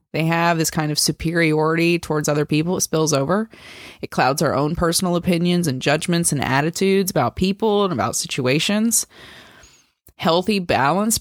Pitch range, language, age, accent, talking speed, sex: 145-180 Hz, English, 20-39, American, 155 wpm, female